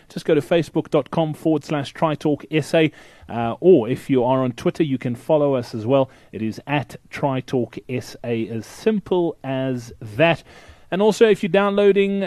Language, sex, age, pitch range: English, male, 30-49, 135-180 Hz